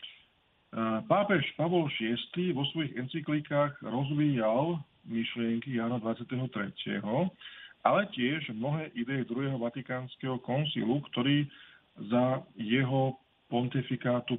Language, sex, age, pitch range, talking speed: Slovak, male, 40-59, 115-140 Hz, 90 wpm